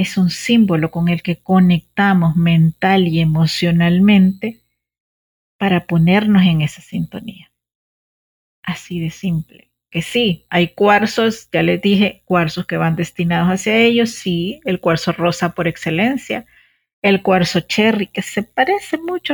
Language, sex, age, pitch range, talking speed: Spanish, female, 40-59, 170-205 Hz, 135 wpm